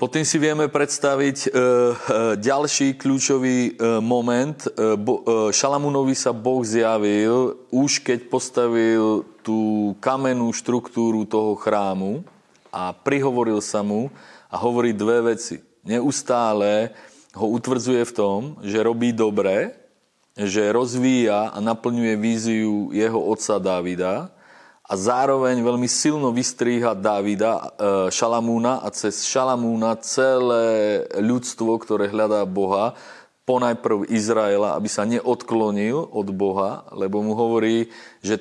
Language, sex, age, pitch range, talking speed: Slovak, male, 30-49, 105-125 Hz, 110 wpm